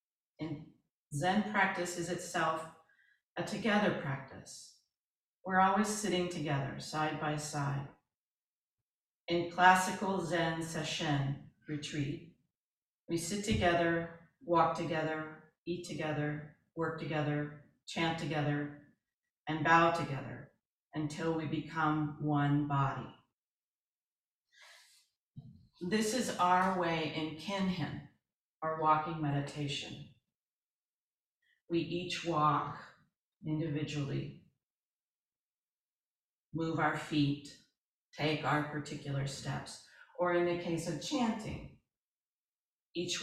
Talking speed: 90 wpm